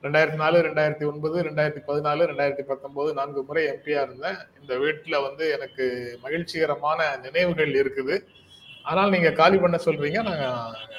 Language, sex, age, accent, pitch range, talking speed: Tamil, male, 30-49, native, 130-175 Hz, 135 wpm